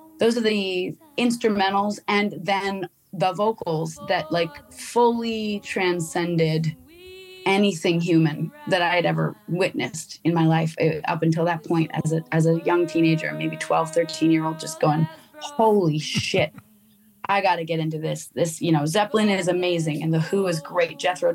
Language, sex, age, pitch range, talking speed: English, female, 20-39, 160-200 Hz, 170 wpm